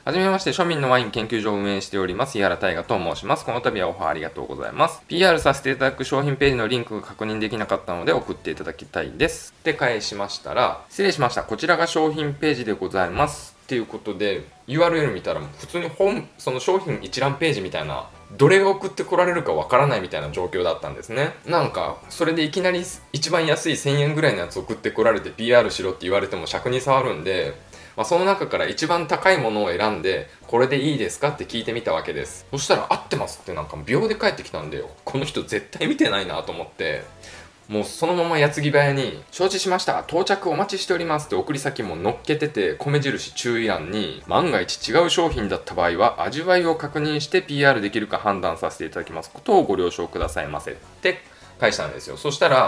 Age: 20-39